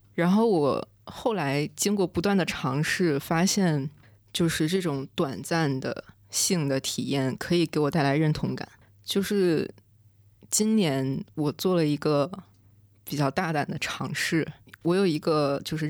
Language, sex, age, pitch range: Chinese, female, 20-39, 135-175 Hz